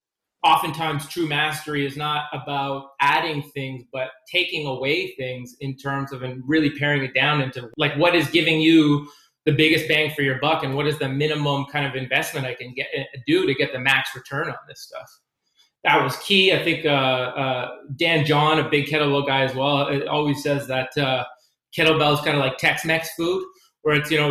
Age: 30-49